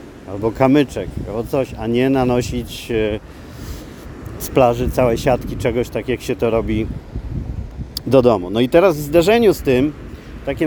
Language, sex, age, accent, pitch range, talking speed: Polish, male, 40-59, native, 110-130 Hz, 150 wpm